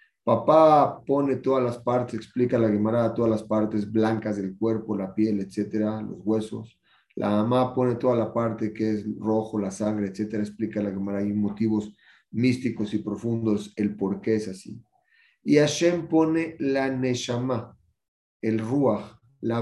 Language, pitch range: Spanish, 110-145 Hz